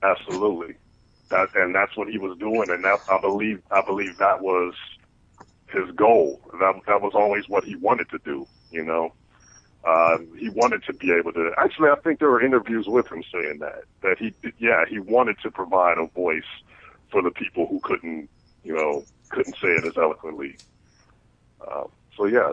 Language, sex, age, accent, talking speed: English, male, 40-59, American, 185 wpm